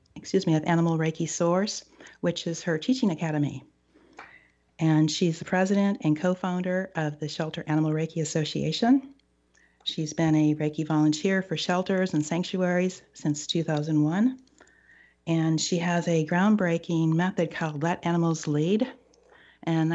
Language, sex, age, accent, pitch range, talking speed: English, female, 40-59, American, 155-180 Hz, 135 wpm